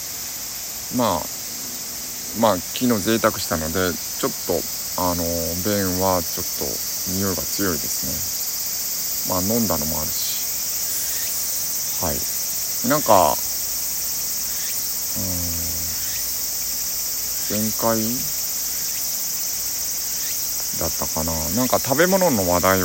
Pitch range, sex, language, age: 85-105 Hz, male, Japanese, 60-79